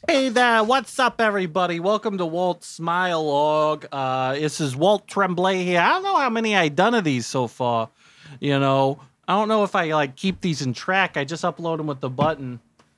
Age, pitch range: 30-49, 135-210 Hz